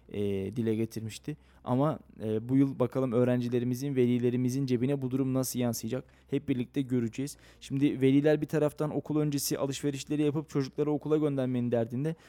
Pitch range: 120-140 Hz